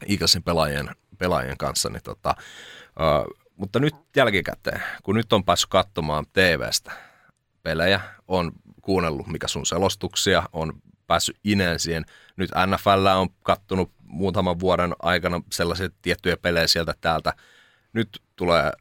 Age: 30-49